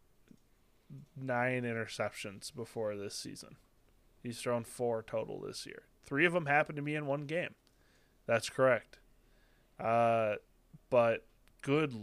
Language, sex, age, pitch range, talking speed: English, male, 20-39, 115-140 Hz, 125 wpm